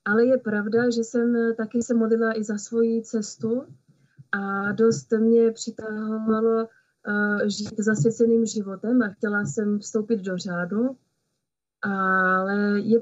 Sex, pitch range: female, 200-230 Hz